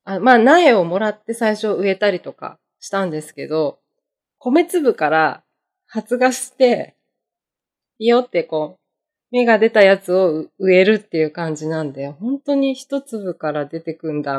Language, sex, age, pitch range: Japanese, female, 20-39, 155-215 Hz